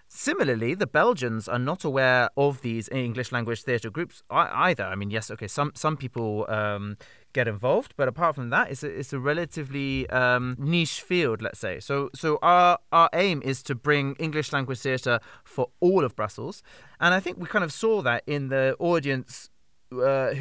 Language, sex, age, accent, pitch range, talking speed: English, male, 30-49, British, 115-155 Hz, 190 wpm